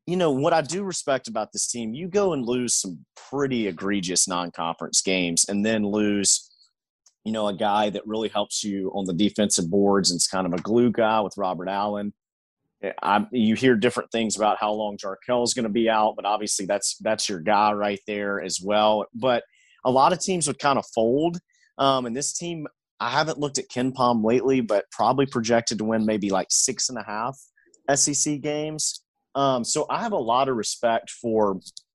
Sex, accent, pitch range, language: male, American, 105-135 Hz, English